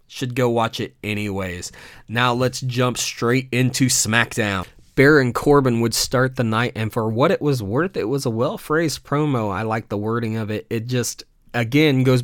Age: 20-39